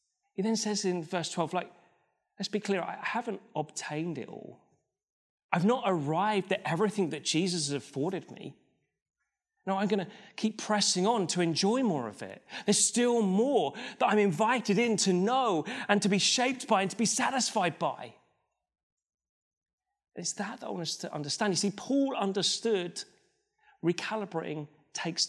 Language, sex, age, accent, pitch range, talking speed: English, male, 30-49, British, 170-220 Hz, 165 wpm